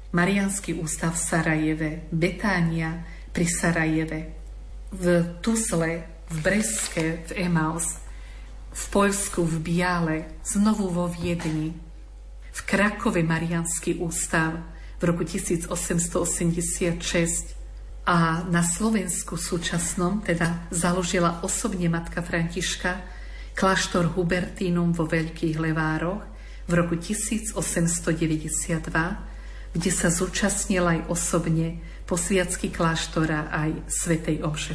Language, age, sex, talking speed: Slovak, 50-69, female, 95 wpm